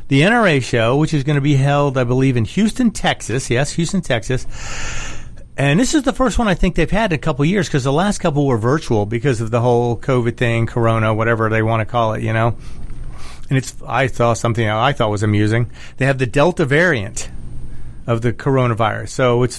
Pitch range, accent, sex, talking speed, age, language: 120-165 Hz, American, male, 220 wpm, 40-59, English